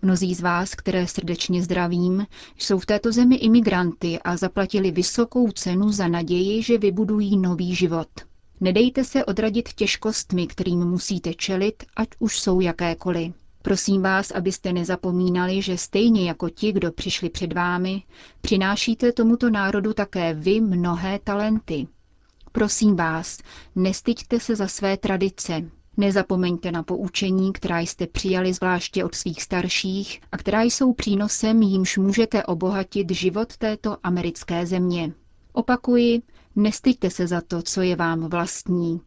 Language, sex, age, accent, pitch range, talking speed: Czech, female, 30-49, native, 180-215 Hz, 135 wpm